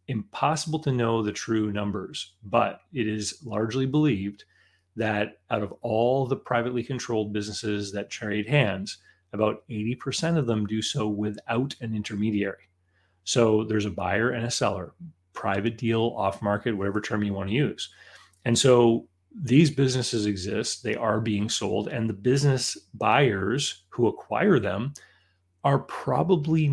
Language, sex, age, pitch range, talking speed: English, male, 30-49, 100-125 Hz, 150 wpm